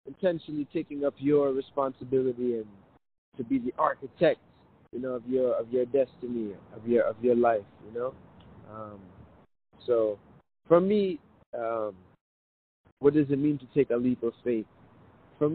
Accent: American